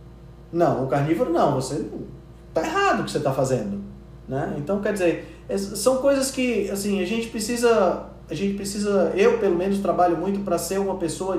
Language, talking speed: Portuguese, 185 wpm